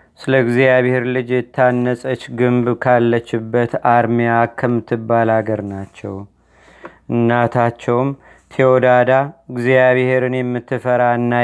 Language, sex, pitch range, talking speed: Amharic, male, 120-130 Hz, 70 wpm